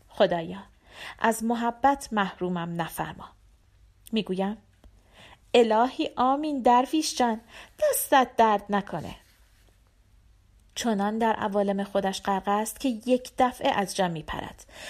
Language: Persian